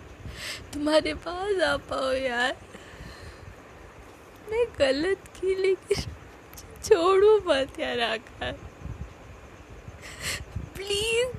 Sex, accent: female, native